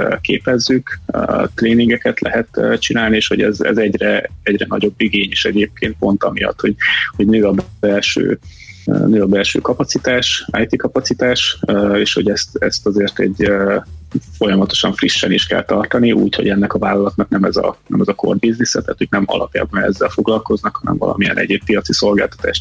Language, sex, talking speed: Hungarian, male, 155 wpm